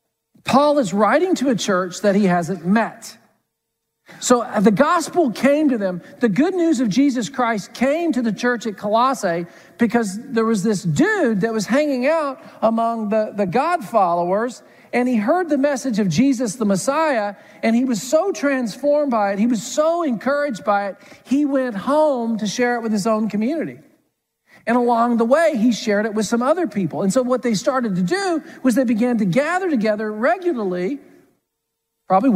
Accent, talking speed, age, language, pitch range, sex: American, 185 wpm, 50-69, English, 205-280 Hz, male